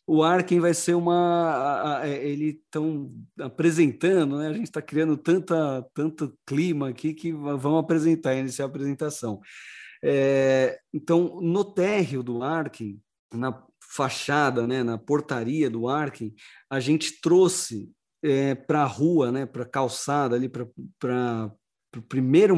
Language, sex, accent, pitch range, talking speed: Portuguese, male, Brazilian, 135-170 Hz, 140 wpm